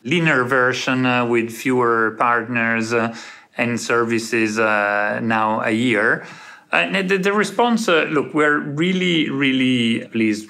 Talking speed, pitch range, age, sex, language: 130 wpm, 110-130 Hz, 40-59, male, English